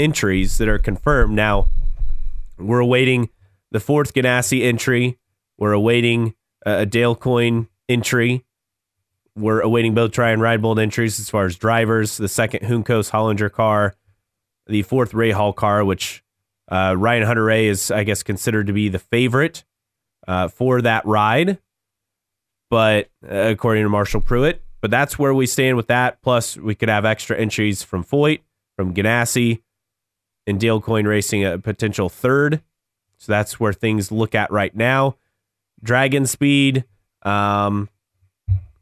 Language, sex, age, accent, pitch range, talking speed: English, male, 30-49, American, 100-120 Hz, 150 wpm